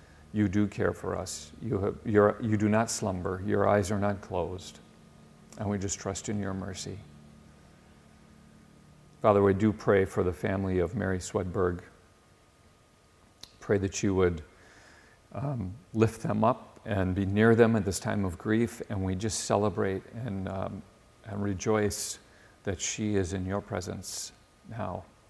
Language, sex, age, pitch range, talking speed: English, male, 50-69, 95-110 Hz, 155 wpm